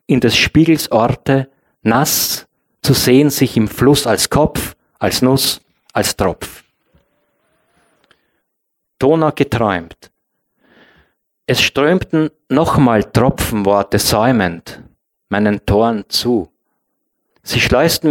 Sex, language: male, German